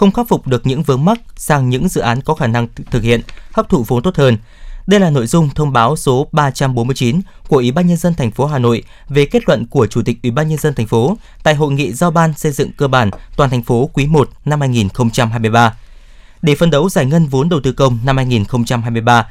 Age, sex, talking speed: 20-39, male, 240 wpm